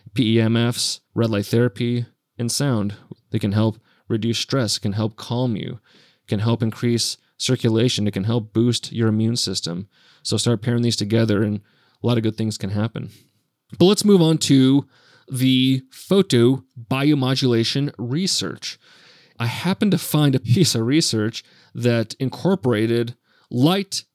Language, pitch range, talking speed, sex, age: English, 115-140 Hz, 145 wpm, male, 30-49